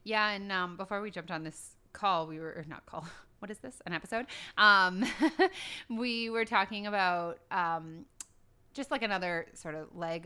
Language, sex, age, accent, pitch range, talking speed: English, female, 30-49, American, 170-215 Hz, 180 wpm